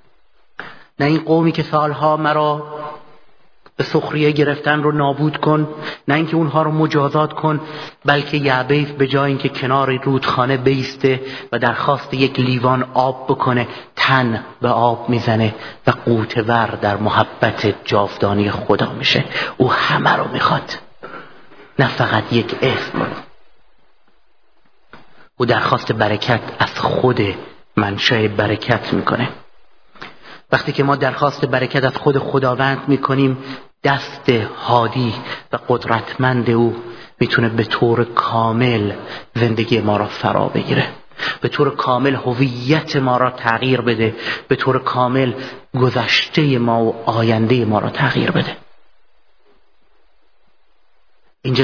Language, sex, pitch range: Persian, male, 115-140 Hz